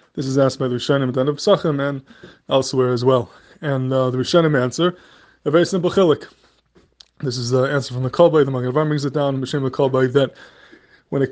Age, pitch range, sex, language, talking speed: 20-39, 130-160 Hz, male, English, 215 wpm